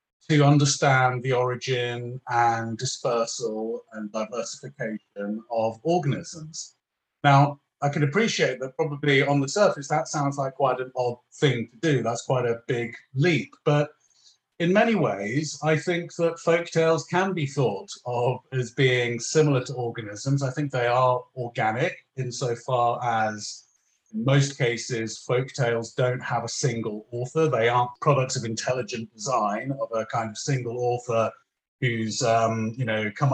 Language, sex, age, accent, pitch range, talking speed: English, male, 30-49, British, 120-150 Hz, 155 wpm